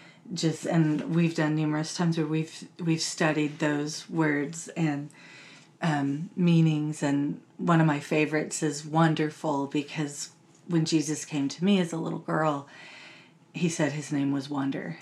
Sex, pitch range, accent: female, 150-170 Hz, American